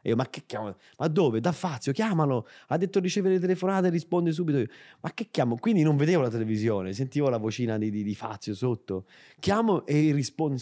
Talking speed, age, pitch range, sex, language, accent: 210 wpm, 30-49, 100-135 Hz, male, Italian, native